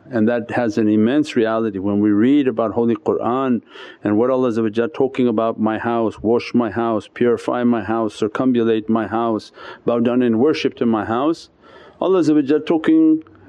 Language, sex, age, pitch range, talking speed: English, male, 50-69, 110-140 Hz, 165 wpm